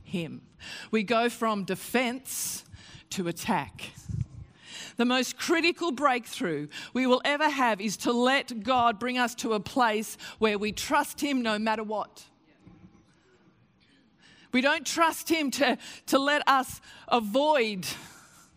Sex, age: female, 40-59